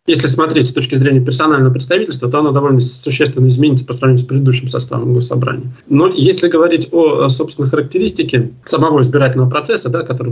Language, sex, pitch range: Russian, male, 125-145 Hz